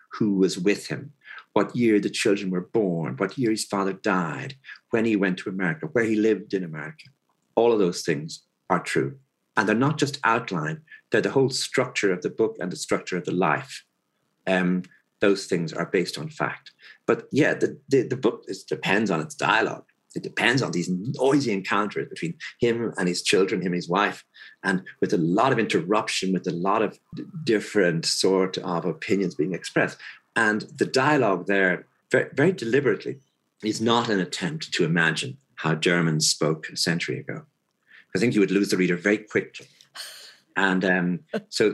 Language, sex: English, male